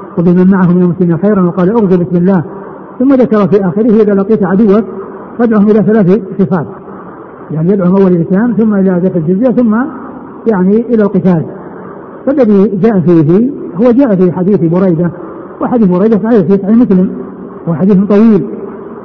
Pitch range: 180-210 Hz